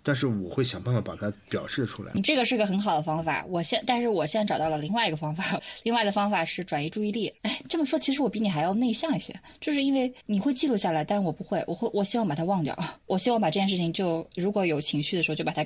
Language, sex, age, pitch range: Chinese, female, 20-39, 155-205 Hz